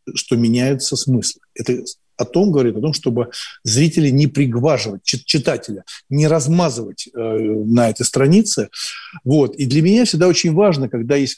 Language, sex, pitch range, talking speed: Russian, male, 120-165 Hz, 155 wpm